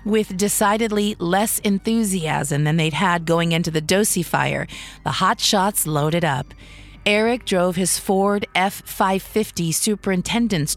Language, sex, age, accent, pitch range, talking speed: English, female, 40-59, American, 165-210 Hz, 125 wpm